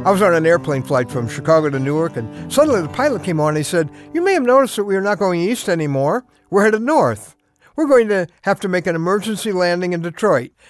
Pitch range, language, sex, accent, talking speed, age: 145-215 Hz, English, male, American, 245 wpm, 60-79